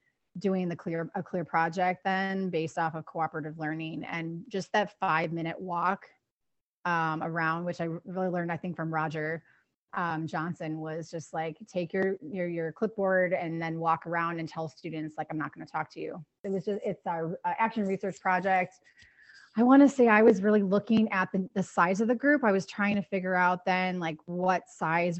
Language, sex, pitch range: English, female, 165-190 Hz